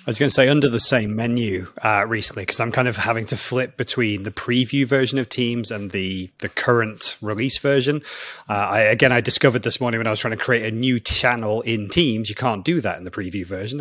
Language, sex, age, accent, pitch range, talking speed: English, male, 30-49, British, 110-145 Hz, 245 wpm